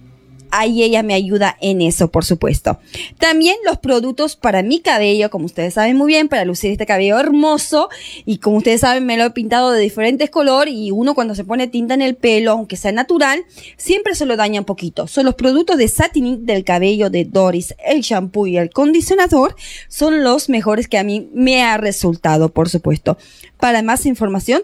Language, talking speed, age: English, 195 wpm, 20-39